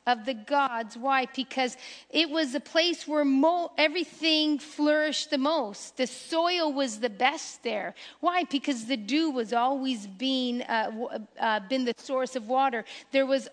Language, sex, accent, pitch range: English, female, American, 240-290 Hz